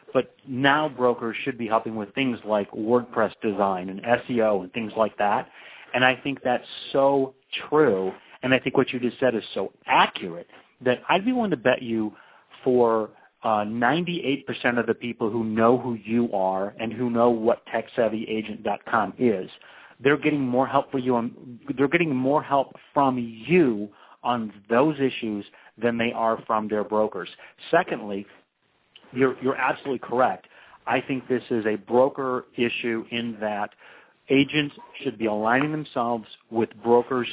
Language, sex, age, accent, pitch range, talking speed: English, male, 40-59, American, 110-130 Hz, 160 wpm